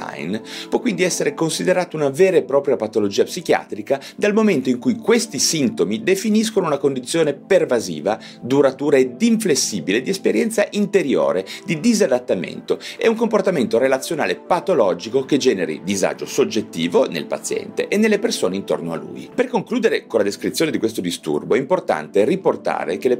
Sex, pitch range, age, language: male, 145-225 Hz, 40-59, Italian